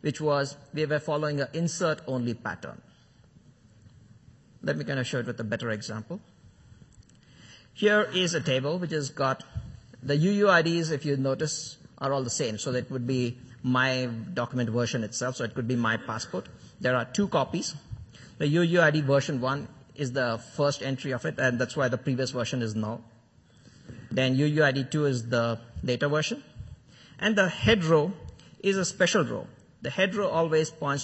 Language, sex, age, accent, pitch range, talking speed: English, male, 50-69, Indian, 120-155 Hz, 175 wpm